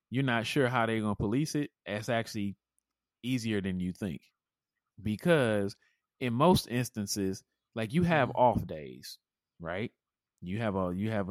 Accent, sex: American, male